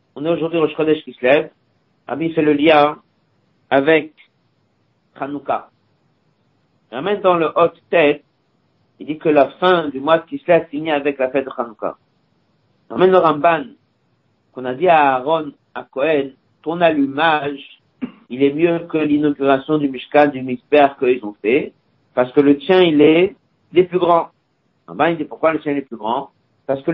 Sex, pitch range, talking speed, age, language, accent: male, 140-175 Hz, 175 wpm, 50-69, French, French